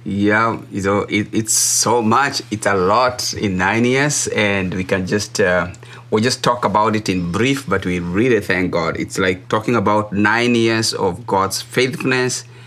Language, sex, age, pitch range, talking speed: English, male, 30-49, 100-120 Hz, 180 wpm